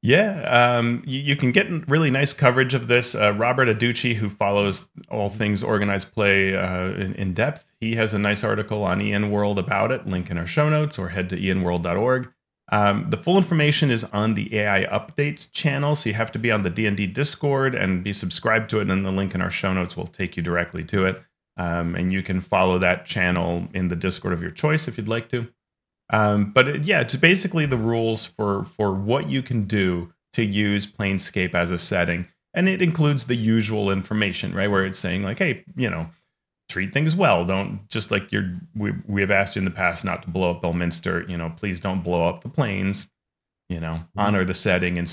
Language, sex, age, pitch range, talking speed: English, male, 30-49, 90-120 Hz, 220 wpm